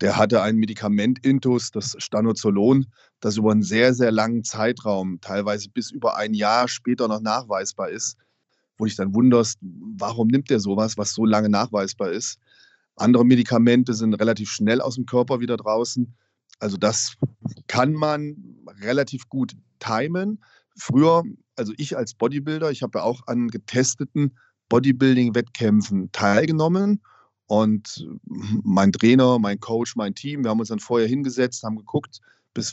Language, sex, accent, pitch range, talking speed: German, male, German, 110-130 Hz, 150 wpm